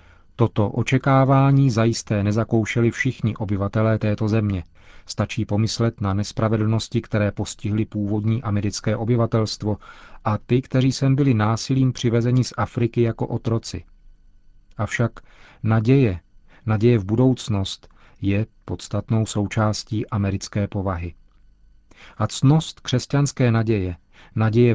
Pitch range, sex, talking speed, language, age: 105-125 Hz, male, 105 wpm, Czech, 40-59